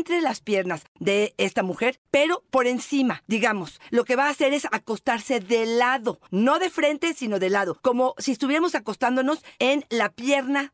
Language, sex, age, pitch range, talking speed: Spanish, female, 40-59, 230-285 Hz, 180 wpm